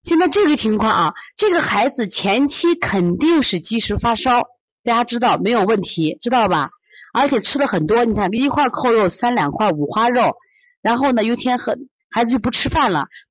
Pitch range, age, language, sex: 180-250 Hz, 30-49, Chinese, female